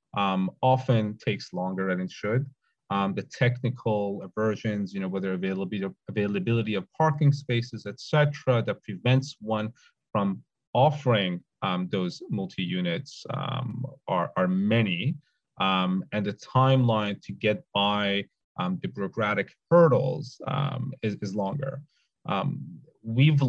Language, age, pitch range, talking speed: English, 30-49, 100-135 Hz, 125 wpm